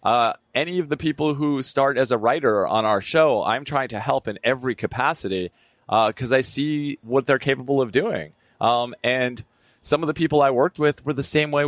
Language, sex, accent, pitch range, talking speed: English, male, American, 110-140 Hz, 215 wpm